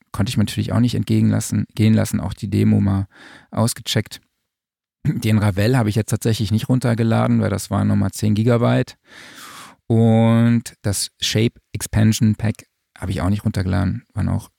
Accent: German